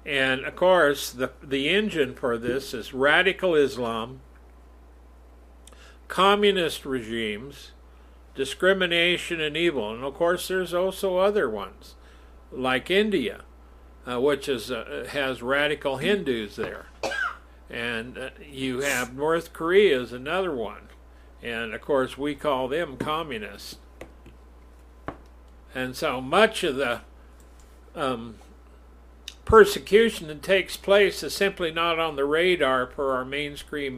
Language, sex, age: English, male, 60-79